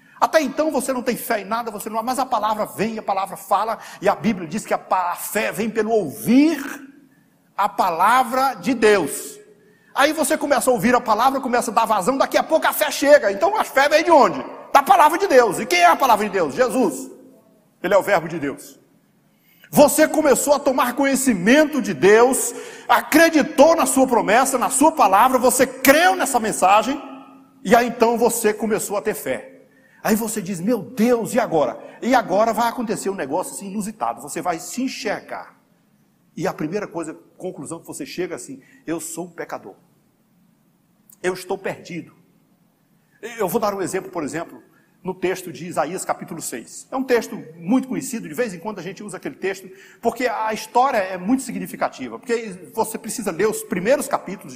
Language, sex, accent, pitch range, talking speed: Portuguese, male, Brazilian, 195-260 Hz, 190 wpm